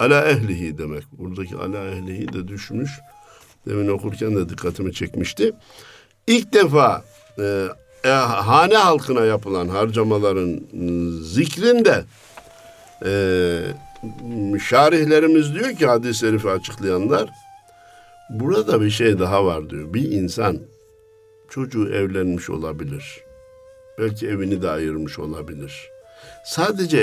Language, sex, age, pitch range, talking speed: Turkish, male, 60-79, 95-155 Hz, 100 wpm